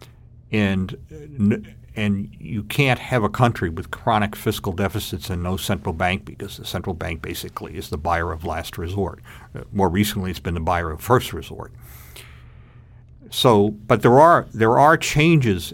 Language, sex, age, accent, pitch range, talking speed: English, male, 50-69, American, 95-115 Hz, 165 wpm